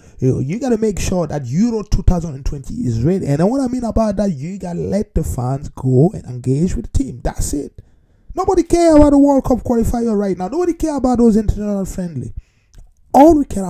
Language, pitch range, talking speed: English, 130-215 Hz, 215 wpm